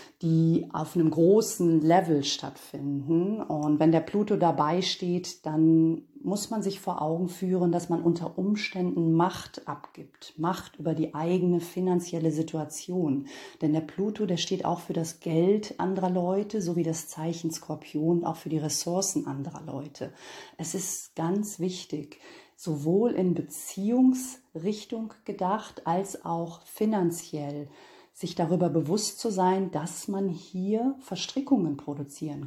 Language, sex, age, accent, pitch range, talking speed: German, female, 40-59, German, 160-200 Hz, 135 wpm